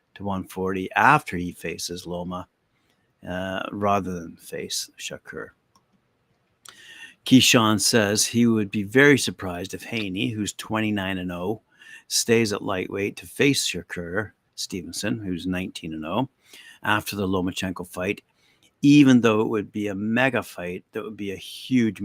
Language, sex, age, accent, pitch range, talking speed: English, male, 60-79, American, 95-110 Hz, 140 wpm